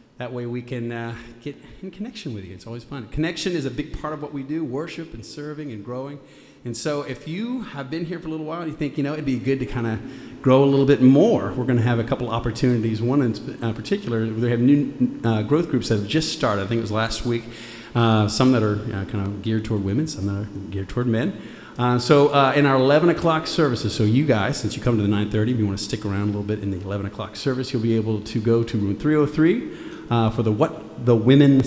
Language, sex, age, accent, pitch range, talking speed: English, male, 40-59, American, 110-140 Hz, 270 wpm